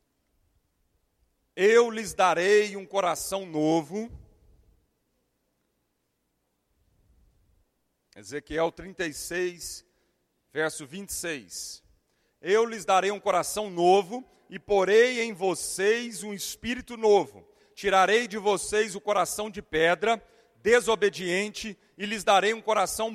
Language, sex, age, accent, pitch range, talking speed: Portuguese, male, 40-59, Brazilian, 195-245 Hz, 95 wpm